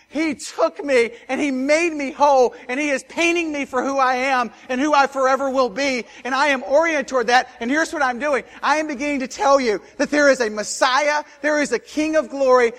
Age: 50-69